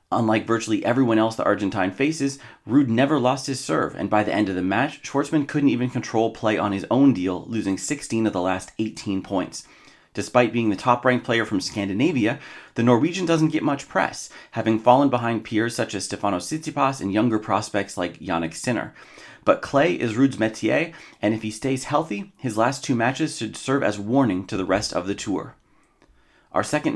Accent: American